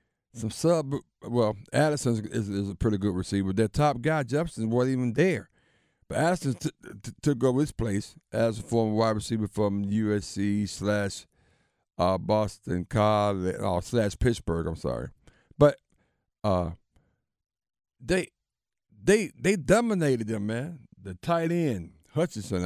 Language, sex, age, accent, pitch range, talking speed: English, male, 50-69, American, 100-135 Hz, 145 wpm